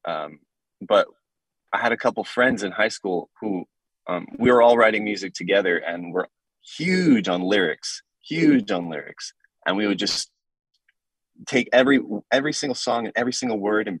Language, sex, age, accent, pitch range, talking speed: English, male, 20-39, American, 90-110 Hz, 170 wpm